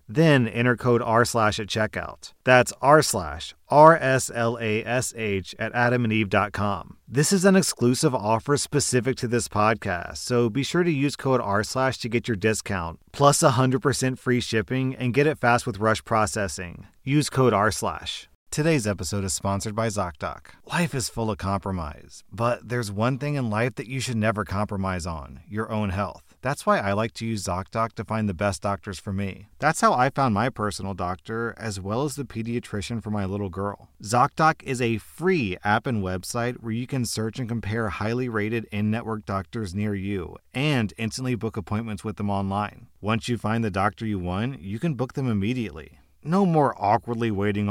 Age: 40-59